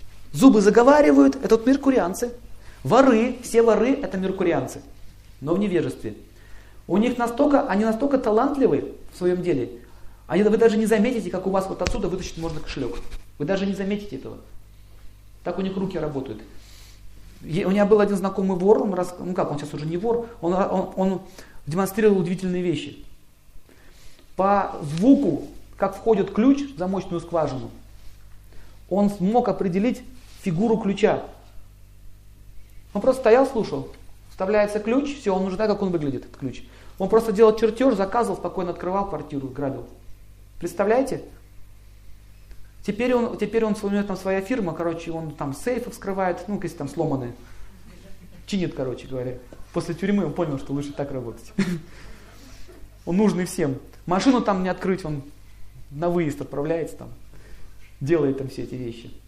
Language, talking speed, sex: Russian, 150 wpm, male